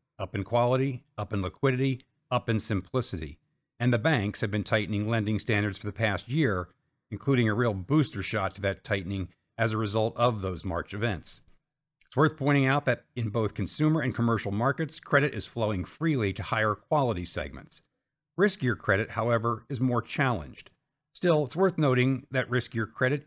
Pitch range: 105-130 Hz